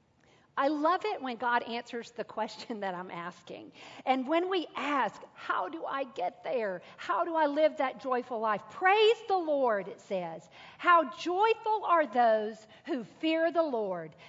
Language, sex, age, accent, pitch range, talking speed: English, female, 50-69, American, 235-335 Hz, 170 wpm